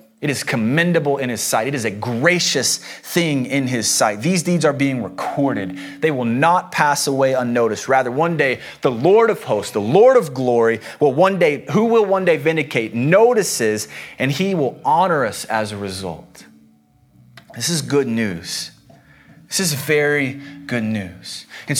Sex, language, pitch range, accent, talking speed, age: male, English, 130-180 Hz, American, 175 wpm, 30-49